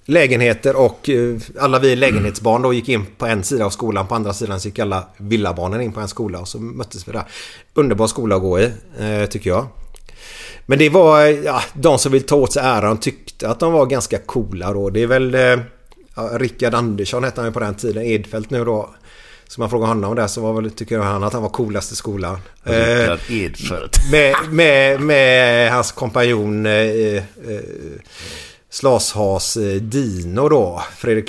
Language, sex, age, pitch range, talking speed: Swedish, male, 30-49, 105-130 Hz, 190 wpm